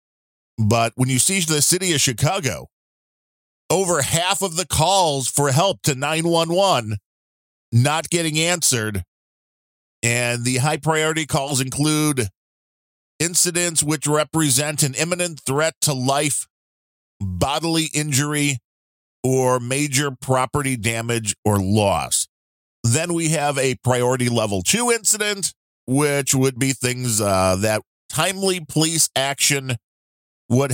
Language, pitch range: English, 105-150 Hz